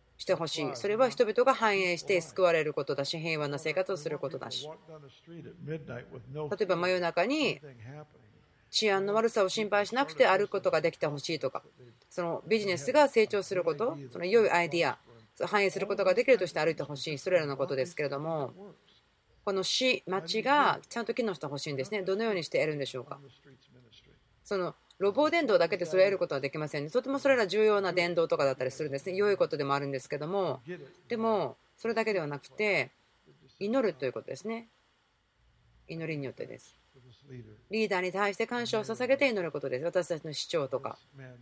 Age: 30-49